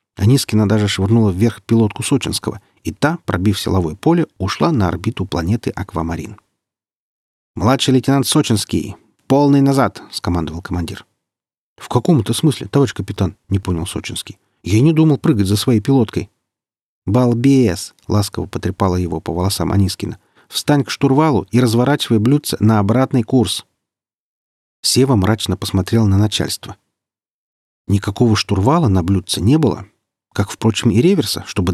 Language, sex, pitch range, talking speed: Russian, male, 95-130 Hz, 140 wpm